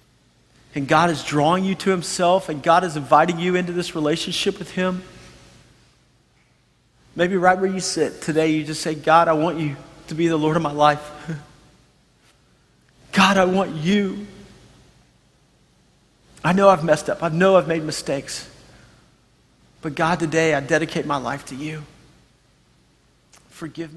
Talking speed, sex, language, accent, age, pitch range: 155 wpm, male, English, American, 40-59, 145-170 Hz